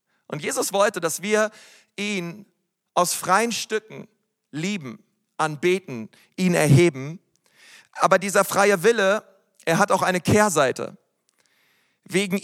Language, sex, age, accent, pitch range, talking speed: German, male, 40-59, German, 175-205 Hz, 110 wpm